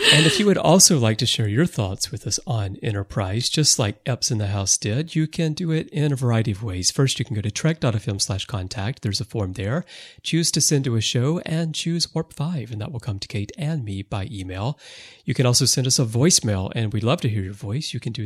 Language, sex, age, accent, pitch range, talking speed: English, male, 40-59, American, 105-150 Hz, 255 wpm